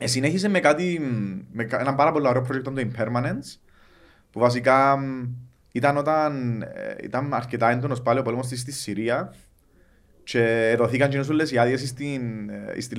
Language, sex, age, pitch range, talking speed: Greek, male, 30-49, 110-140 Hz, 150 wpm